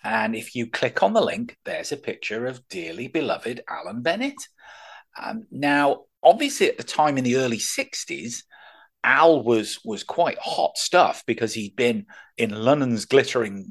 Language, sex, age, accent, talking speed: English, male, 40-59, British, 160 wpm